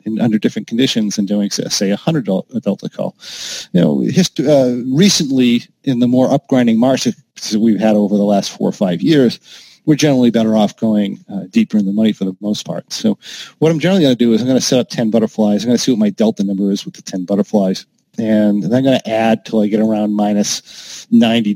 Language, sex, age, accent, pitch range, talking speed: English, male, 40-59, American, 105-140 Hz, 235 wpm